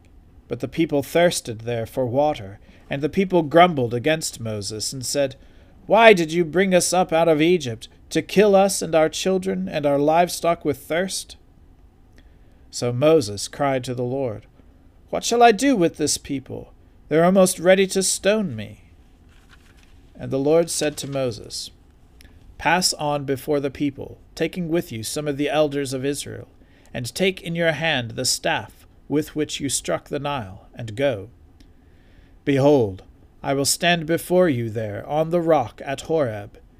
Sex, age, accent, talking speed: male, 40-59, American, 165 wpm